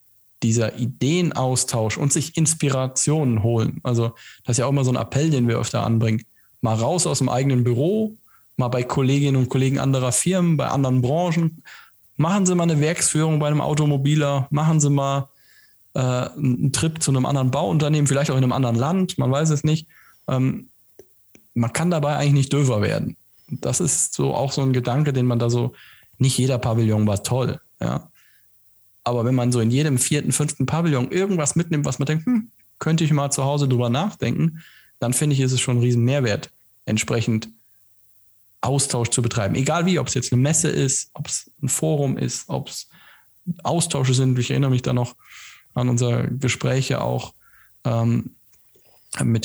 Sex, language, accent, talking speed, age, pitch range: male, German, German, 180 wpm, 10-29, 120-150 Hz